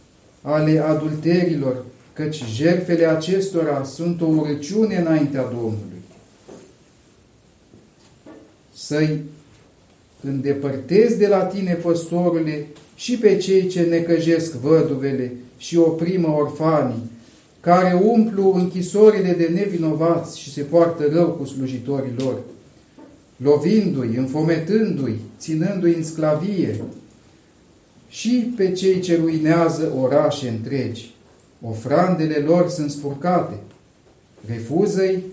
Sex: male